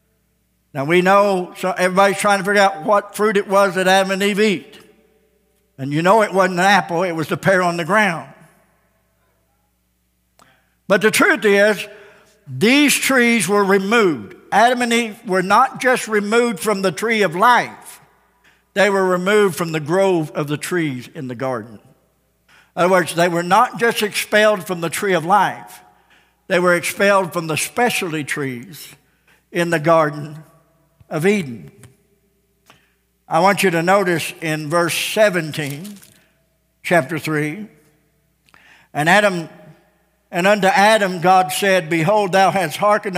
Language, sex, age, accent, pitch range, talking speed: English, male, 60-79, American, 170-205 Hz, 155 wpm